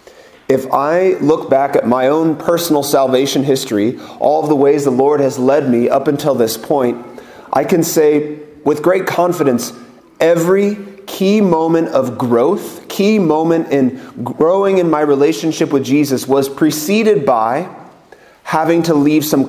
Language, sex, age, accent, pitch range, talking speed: English, male, 30-49, American, 135-160 Hz, 155 wpm